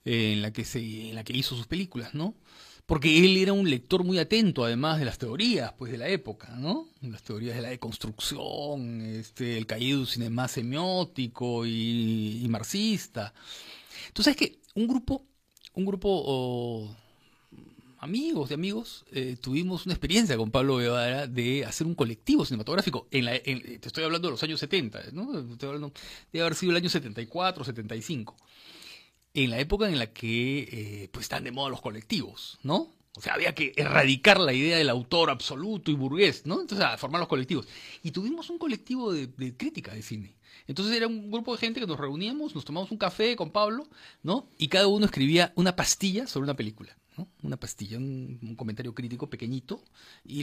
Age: 40-59